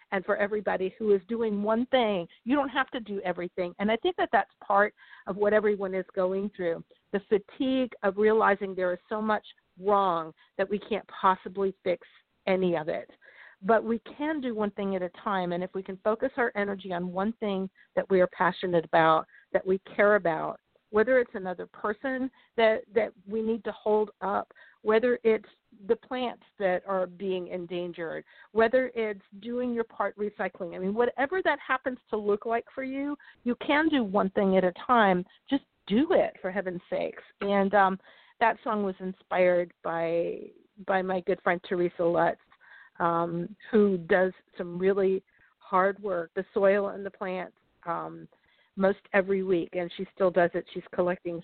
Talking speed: 180 wpm